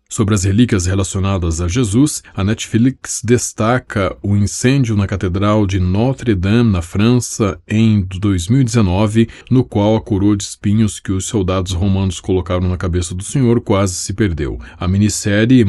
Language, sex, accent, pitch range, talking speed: Portuguese, male, Brazilian, 95-110 Hz, 150 wpm